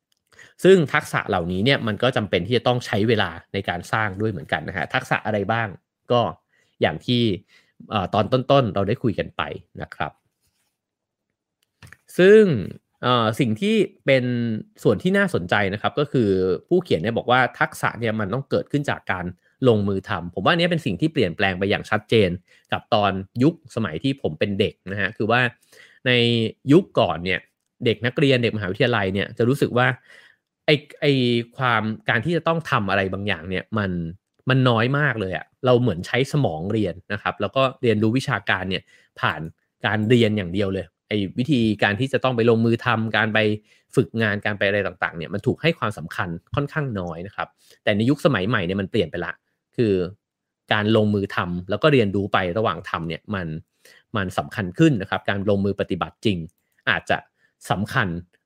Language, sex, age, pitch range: English, male, 30-49, 100-130 Hz